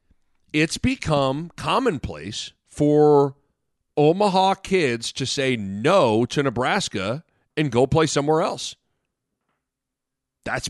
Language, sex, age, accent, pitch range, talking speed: English, male, 40-59, American, 130-195 Hz, 95 wpm